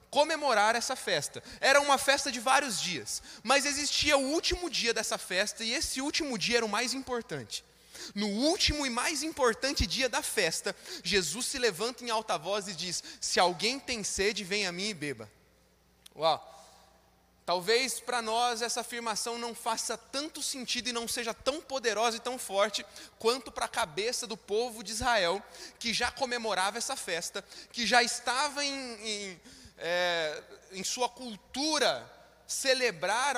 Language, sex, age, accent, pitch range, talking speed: Portuguese, male, 20-39, Brazilian, 200-260 Hz, 160 wpm